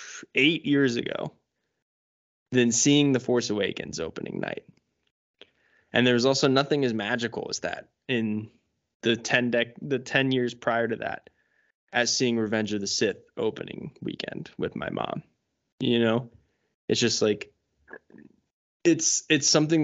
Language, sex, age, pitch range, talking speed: English, male, 20-39, 115-135 Hz, 140 wpm